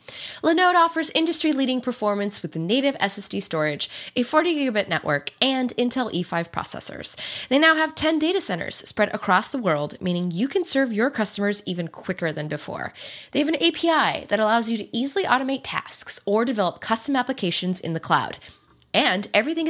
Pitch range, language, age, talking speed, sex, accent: 185-290 Hz, English, 20-39, 170 wpm, female, American